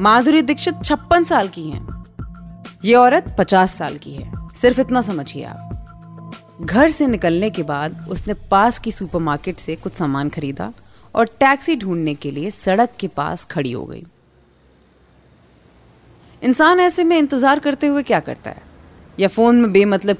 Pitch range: 155-250 Hz